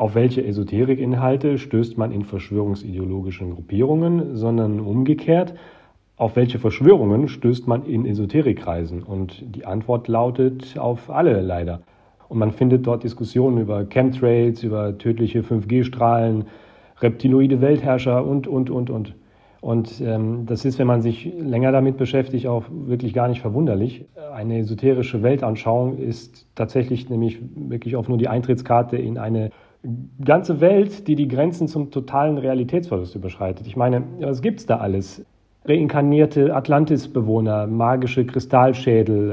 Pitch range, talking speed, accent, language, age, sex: 115-140 Hz, 135 wpm, German, German, 40-59, male